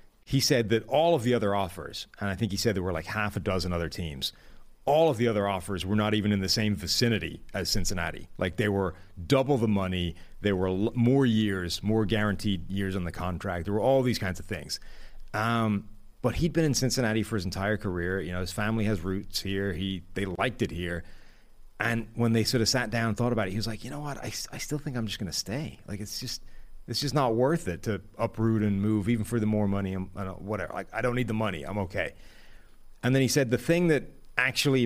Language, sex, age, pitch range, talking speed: English, male, 30-49, 95-115 Hz, 245 wpm